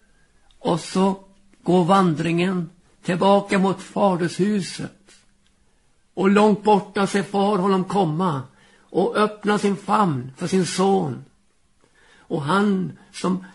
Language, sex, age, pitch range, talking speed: Swedish, male, 60-79, 165-200 Hz, 105 wpm